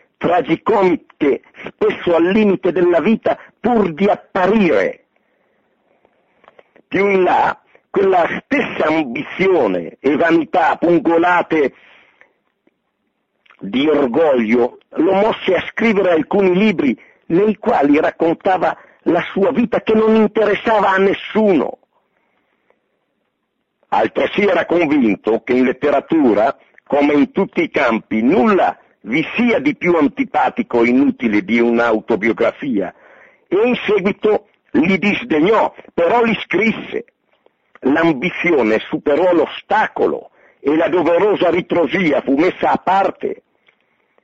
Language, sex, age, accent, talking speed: Italian, male, 50-69, native, 105 wpm